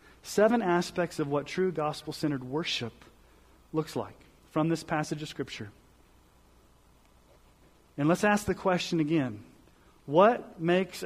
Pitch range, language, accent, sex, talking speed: 135-180 Hz, English, American, male, 120 wpm